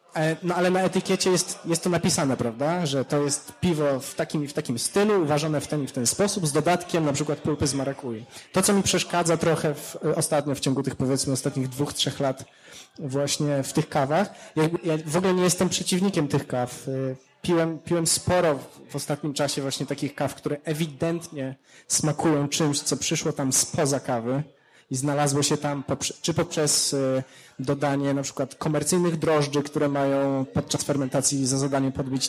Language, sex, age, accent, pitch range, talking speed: Polish, male, 20-39, native, 140-165 Hz, 180 wpm